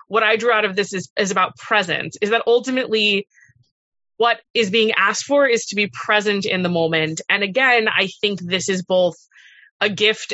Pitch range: 180-220 Hz